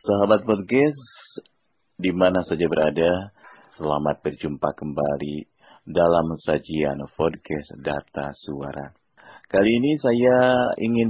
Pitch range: 80-125 Hz